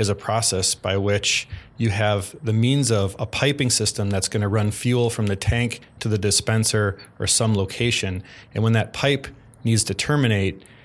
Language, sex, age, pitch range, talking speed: English, male, 30-49, 105-120 Hz, 190 wpm